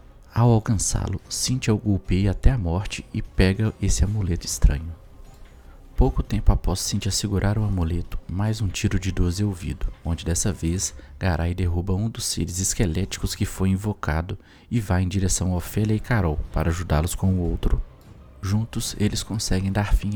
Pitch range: 85-105 Hz